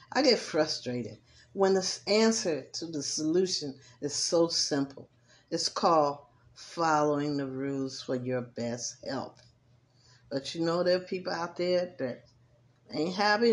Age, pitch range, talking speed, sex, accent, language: 50-69, 125-180 Hz, 140 wpm, female, American, English